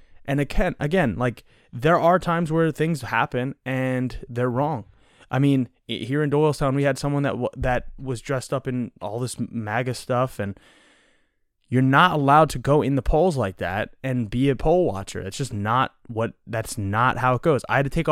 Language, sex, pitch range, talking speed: English, male, 110-145 Hz, 200 wpm